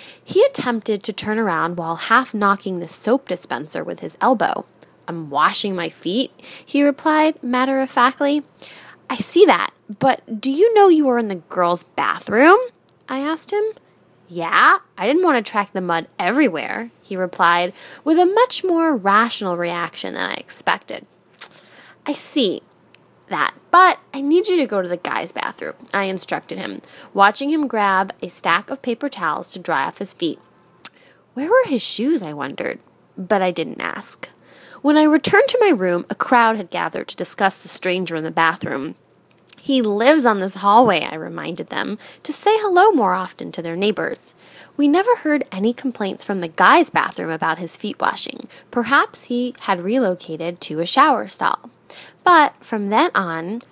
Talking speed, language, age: 170 wpm, English, 10-29